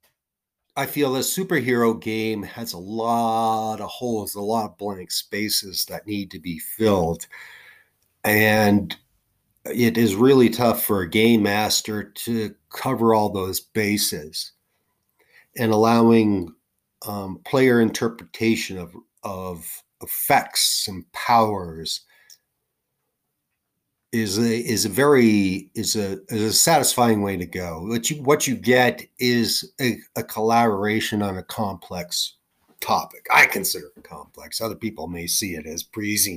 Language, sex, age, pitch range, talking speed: English, male, 50-69, 105-125 Hz, 135 wpm